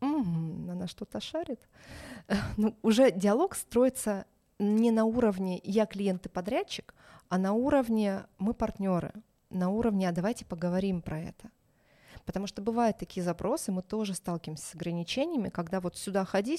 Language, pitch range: Russian, 180-225 Hz